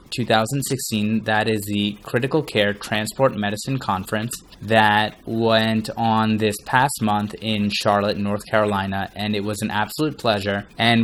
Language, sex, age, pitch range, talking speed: English, male, 20-39, 105-115 Hz, 140 wpm